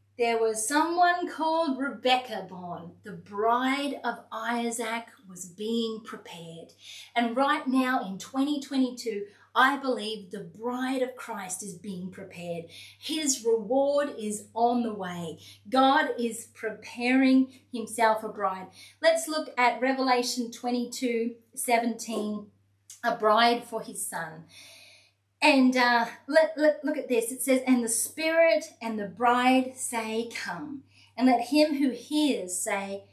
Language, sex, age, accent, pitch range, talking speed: English, female, 30-49, Australian, 220-270 Hz, 130 wpm